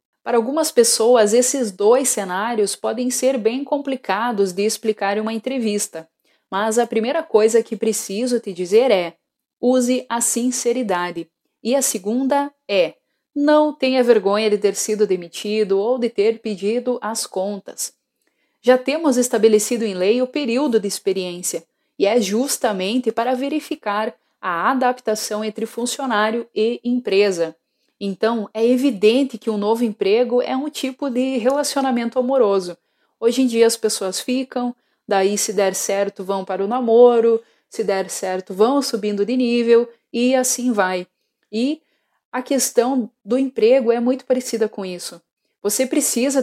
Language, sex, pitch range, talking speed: Portuguese, female, 210-255 Hz, 145 wpm